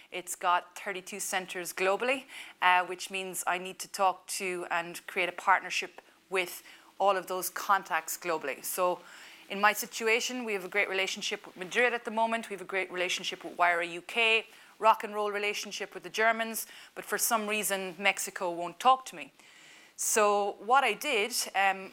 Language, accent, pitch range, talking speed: English, Irish, 185-215 Hz, 180 wpm